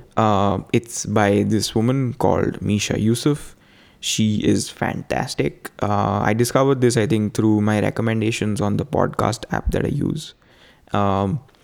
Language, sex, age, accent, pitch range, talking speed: English, male, 20-39, Indian, 100-115 Hz, 145 wpm